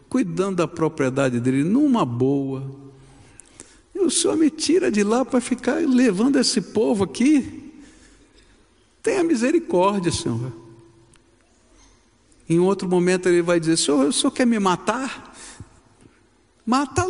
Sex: male